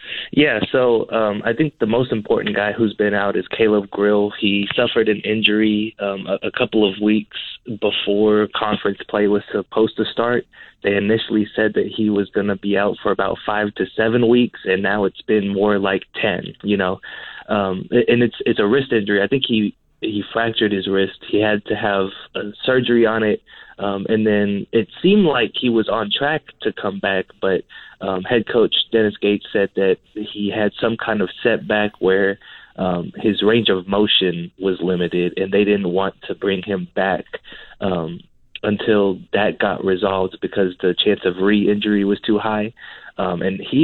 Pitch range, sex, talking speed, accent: 100-110 Hz, male, 190 wpm, American